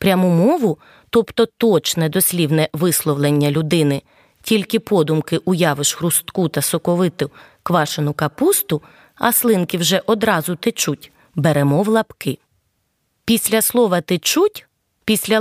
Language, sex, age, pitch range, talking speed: Ukrainian, female, 20-39, 150-220 Hz, 105 wpm